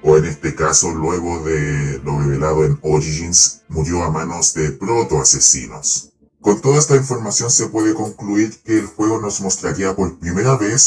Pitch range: 75-110 Hz